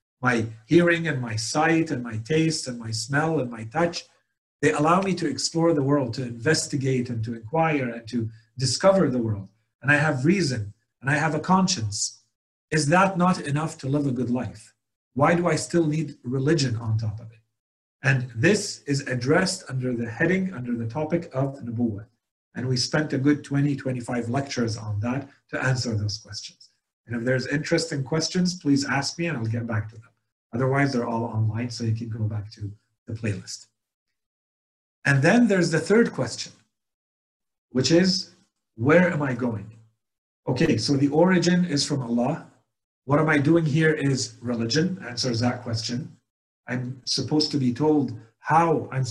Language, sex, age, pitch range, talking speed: English, male, 40-59, 115-155 Hz, 180 wpm